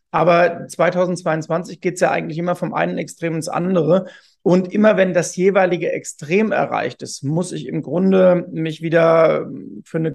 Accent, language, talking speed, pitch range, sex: German, German, 165 wpm, 150-180 Hz, male